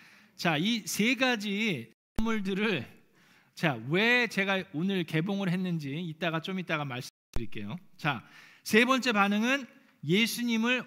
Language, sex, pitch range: Korean, male, 155-210 Hz